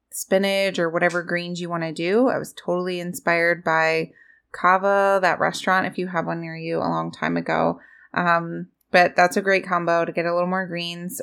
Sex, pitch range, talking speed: female, 175-215 Hz, 205 wpm